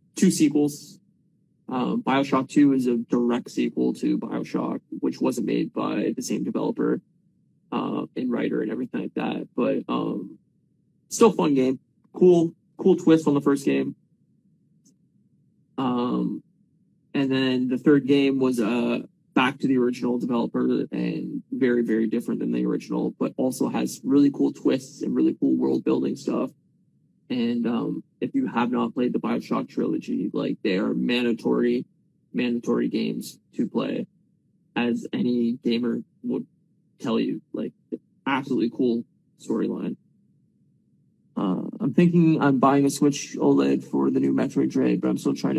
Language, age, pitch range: English, 20-39, 120-150 Hz